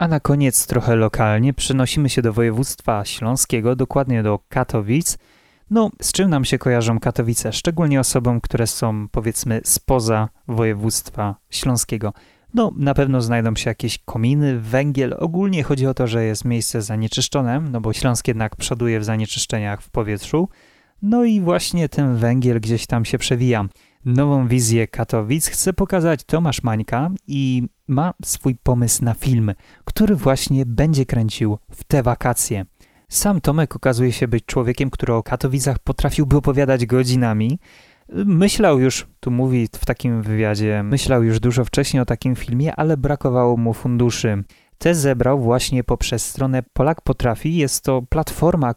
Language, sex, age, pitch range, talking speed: Polish, male, 30-49, 115-140 Hz, 150 wpm